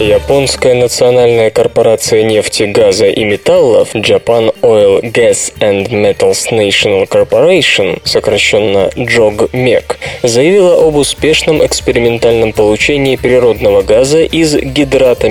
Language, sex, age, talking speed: Russian, male, 20-39, 100 wpm